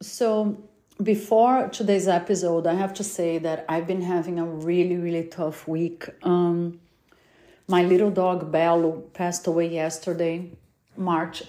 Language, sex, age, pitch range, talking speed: English, female, 40-59, 165-205 Hz, 135 wpm